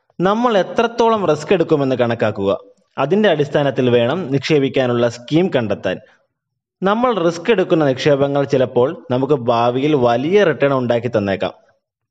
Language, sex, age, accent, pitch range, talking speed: Malayalam, male, 20-39, native, 125-170 Hz, 110 wpm